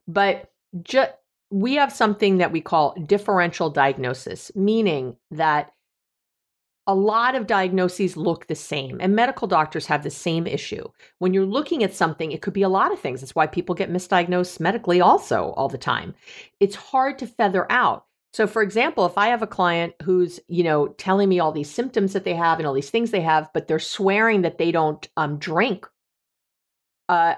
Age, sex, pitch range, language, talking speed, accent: 50-69, female, 160-220 Hz, English, 190 wpm, American